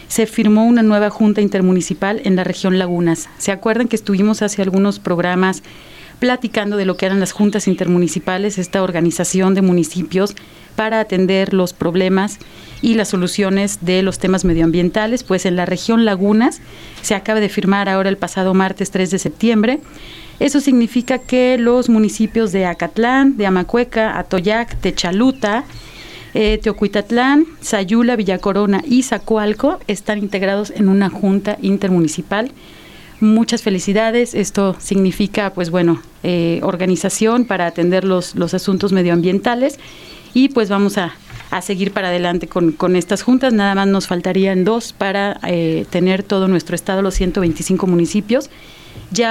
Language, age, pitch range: Spanish, 40-59, 185-220 Hz